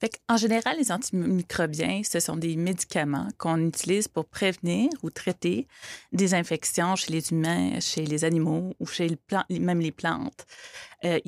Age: 30-49